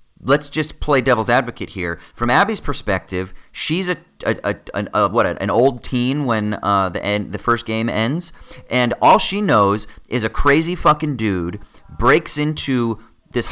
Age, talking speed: 30-49, 170 wpm